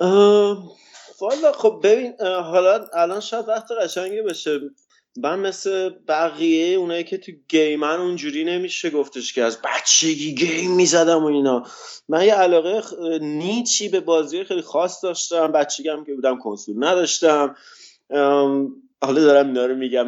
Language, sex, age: Persian, male, 20-39